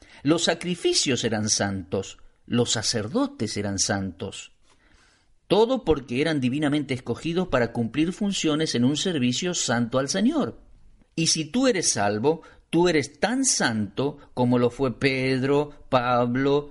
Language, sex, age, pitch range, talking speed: Spanish, male, 50-69, 120-160 Hz, 130 wpm